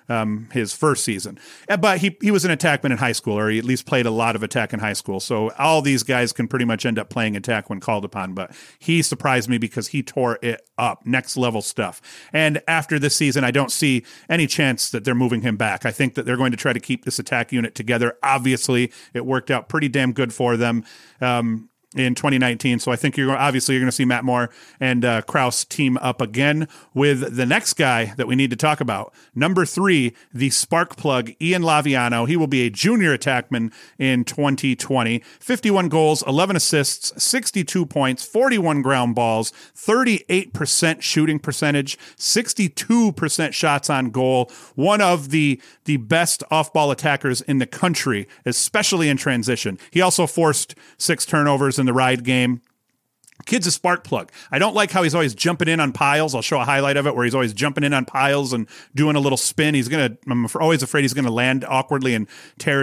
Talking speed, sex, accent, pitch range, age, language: 210 wpm, male, American, 125-155 Hz, 40-59, English